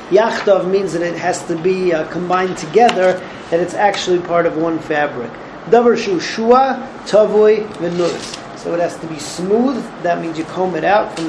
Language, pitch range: English, 165-200 Hz